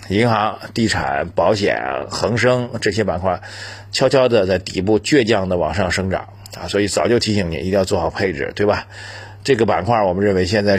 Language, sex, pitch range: Chinese, male, 100-115 Hz